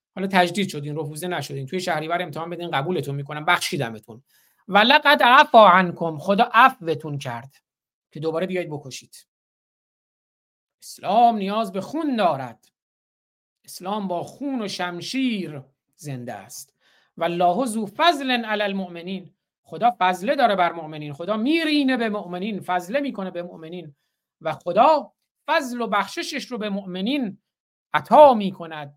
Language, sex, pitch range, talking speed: Persian, male, 175-250 Hz, 130 wpm